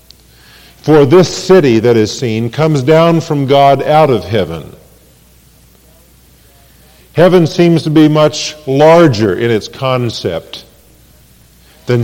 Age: 50-69